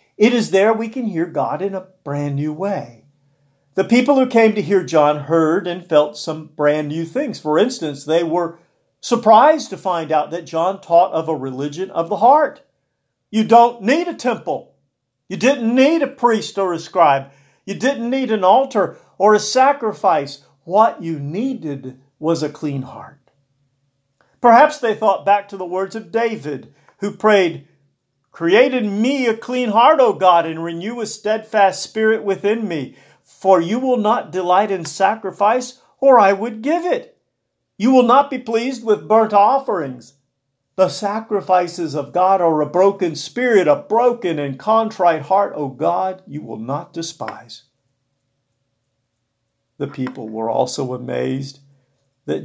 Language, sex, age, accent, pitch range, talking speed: English, male, 50-69, American, 145-220 Hz, 160 wpm